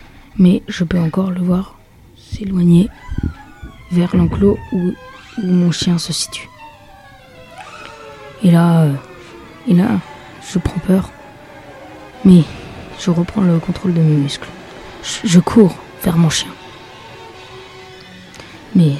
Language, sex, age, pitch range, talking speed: French, female, 20-39, 165-195 Hz, 115 wpm